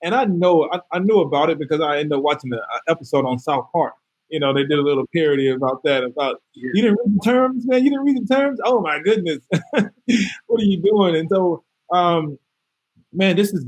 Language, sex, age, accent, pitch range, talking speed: English, male, 20-39, American, 135-165 Hz, 230 wpm